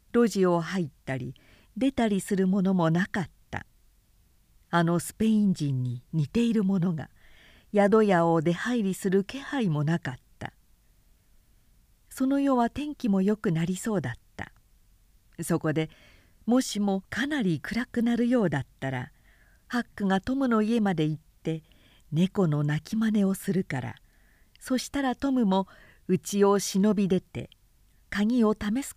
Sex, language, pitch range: female, Japanese, 145-225 Hz